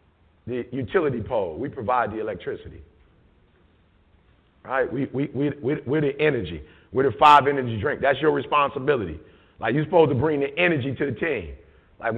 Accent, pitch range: American, 115-170 Hz